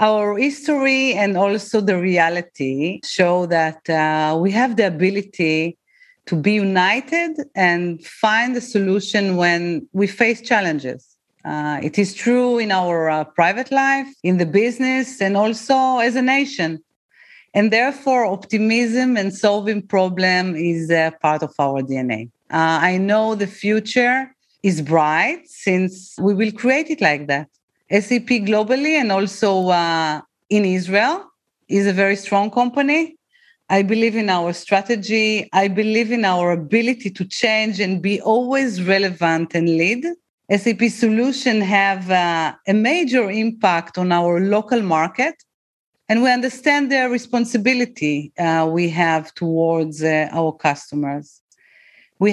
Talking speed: 140 wpm